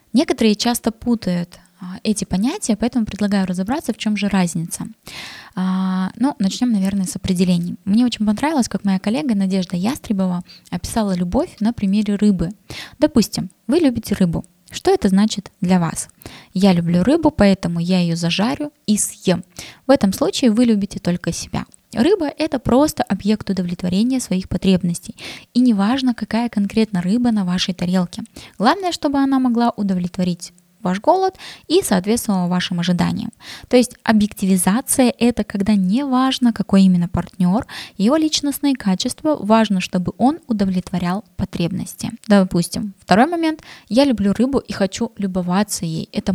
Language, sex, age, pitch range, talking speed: Russian, female, 20-39, 185-240 Hz, 145 wpm